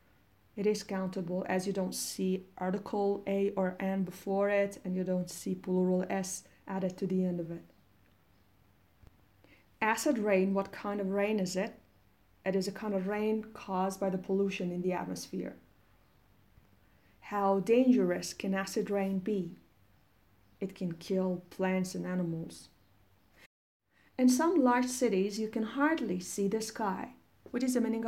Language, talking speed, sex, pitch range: Persian, 155 wpm, female, 170-210 Hz